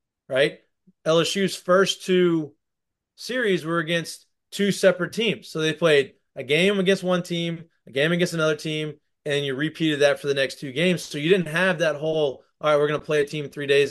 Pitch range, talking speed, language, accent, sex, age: 135-160 Hz, 205 wpm, English, American, male, 30-49